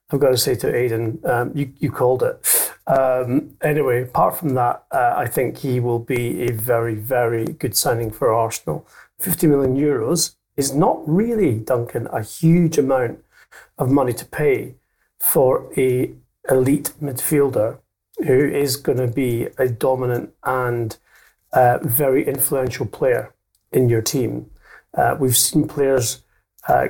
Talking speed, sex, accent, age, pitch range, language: 150 wpm, male, British, 40-59, 115-140 Hz, English